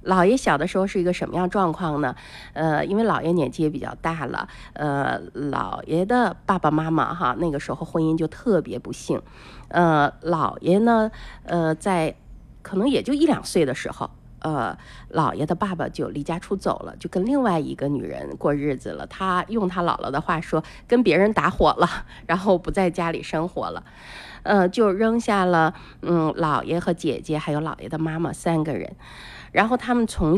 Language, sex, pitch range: Chinese, female, 150-180 Hz